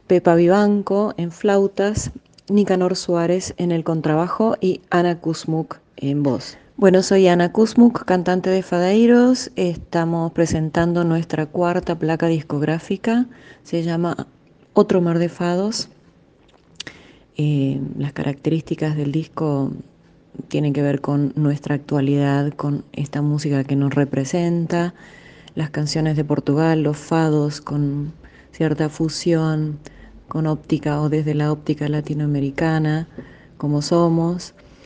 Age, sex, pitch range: 30-49, female, 150-170 Hz